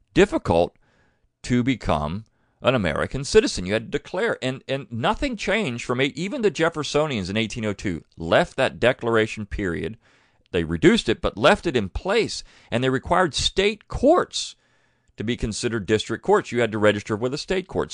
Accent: American